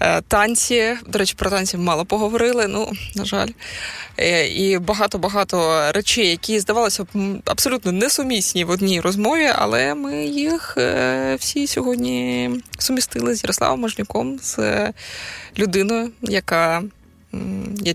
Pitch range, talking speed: 165-210 Hz, 115 wpm